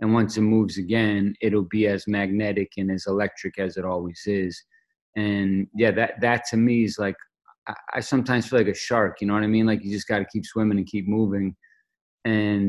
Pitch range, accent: 100-120 Hz, American